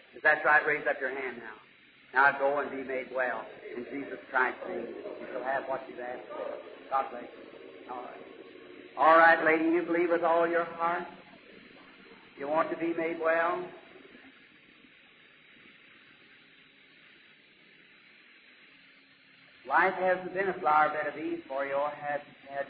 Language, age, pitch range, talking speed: English, 50-69, 140-170 Hz, 155 wpm